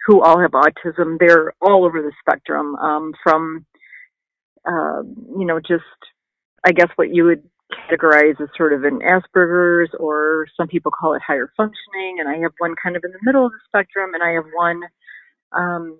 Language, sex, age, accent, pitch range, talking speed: English, female, 40-59, American, 155-190 Hz, 190 wpm